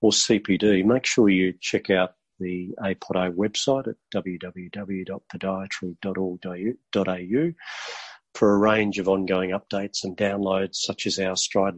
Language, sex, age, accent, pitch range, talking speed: English, male, 40-59, Australian, 95-115 Hz, 120 wpm